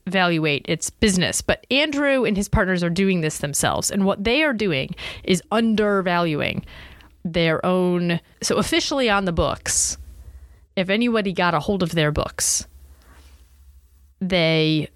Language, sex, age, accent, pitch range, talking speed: English, female, 30-49, American, 160-215 Hz, 140 wpm